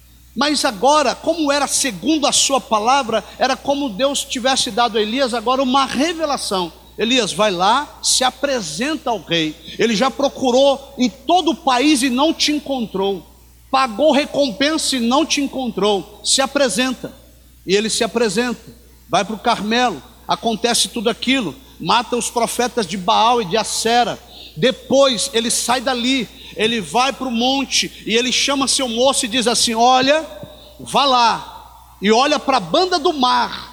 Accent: Brazilian